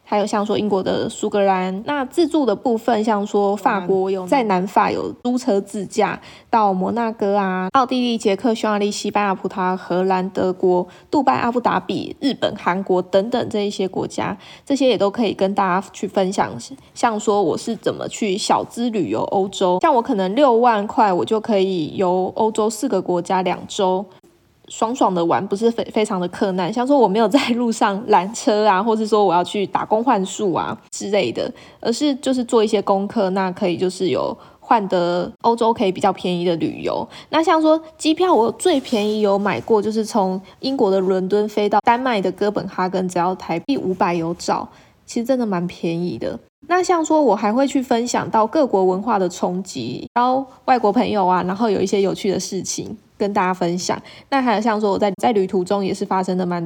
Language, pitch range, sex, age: Chinese, 190-235 Hz, female, 20-39